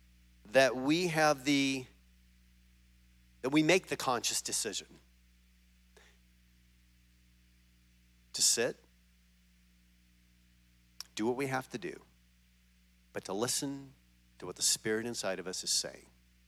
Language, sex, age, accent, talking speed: English, male, 50-69, American, 110 wpm